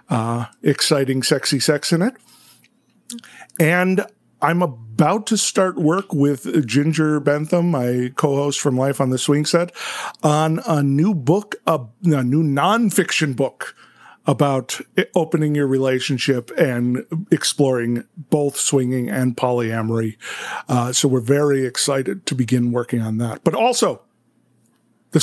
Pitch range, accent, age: 135-175 Hz, American, 50-69